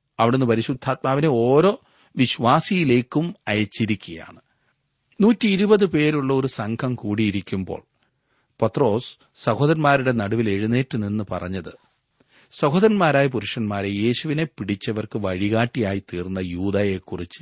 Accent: native